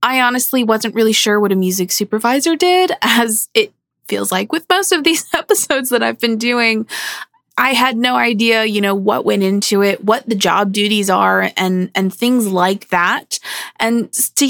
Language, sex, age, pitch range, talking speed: English, female, 20-39, 190-255 Hz, 185 wpm